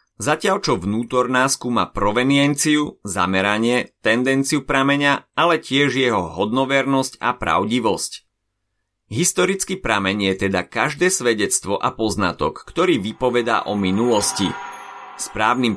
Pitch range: 100-140 Hz